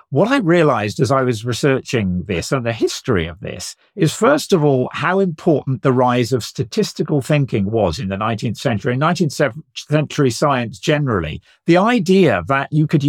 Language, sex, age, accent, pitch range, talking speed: English, male, 50-69, British, 130-175 Hz, 175 wpm